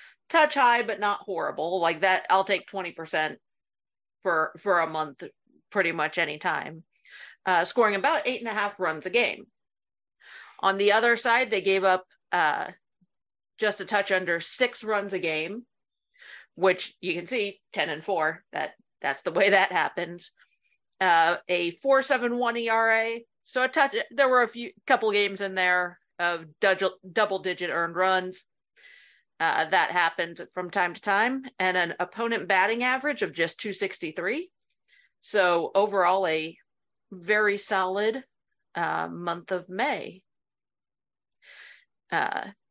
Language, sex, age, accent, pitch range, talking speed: English, female, 40-59, American, 185-240 Hz, 145 wpm